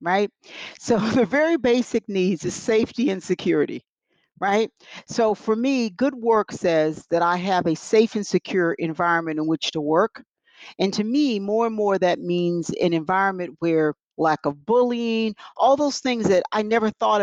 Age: 50-69